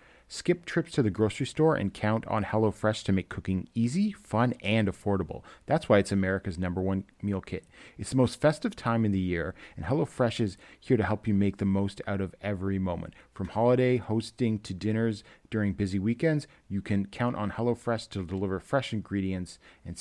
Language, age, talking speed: English, 40-59, 195 wpm